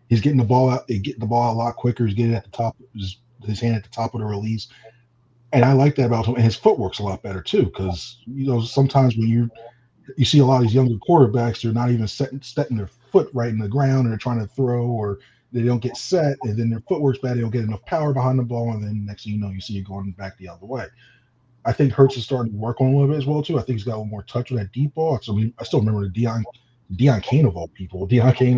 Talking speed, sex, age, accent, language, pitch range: 310 wpm, male, 20-39, American, English, 105-125 Hz